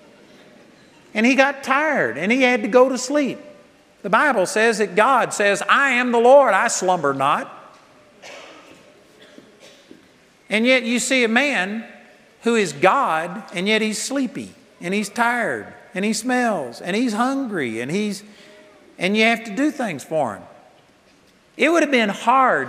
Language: English